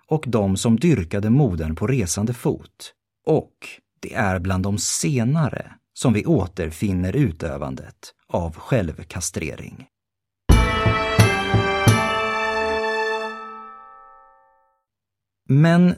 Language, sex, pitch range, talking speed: Swedish, male, 95-140 Hz, 80 wpm